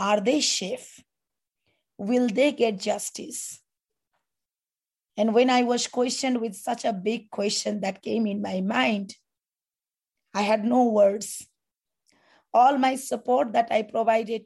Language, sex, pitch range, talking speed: German, female, 210-250 Hz, 135 wpm